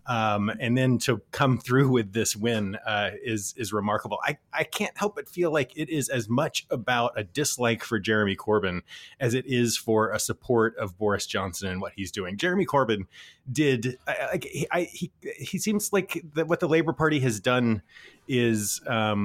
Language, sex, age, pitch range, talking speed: English, male, 30-49, 110-150 Hz, 195 wpm